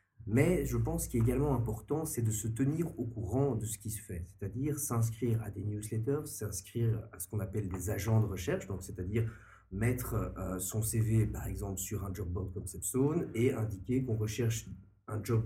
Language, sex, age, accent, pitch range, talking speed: French, male, 40-59, French, 100-120 Hz, 195 wpm